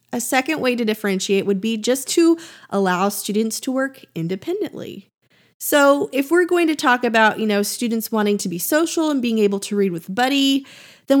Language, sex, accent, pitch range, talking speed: English, female, American, 195-250 Hz, 200 wpm